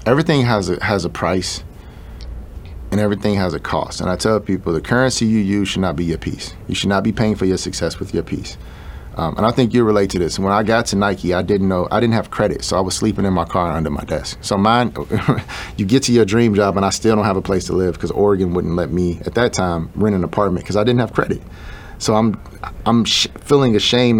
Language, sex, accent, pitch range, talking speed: English, male, American, 90-110 Hz, 255 wpm